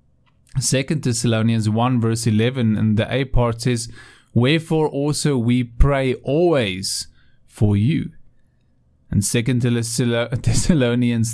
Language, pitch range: English, 105-130 Hz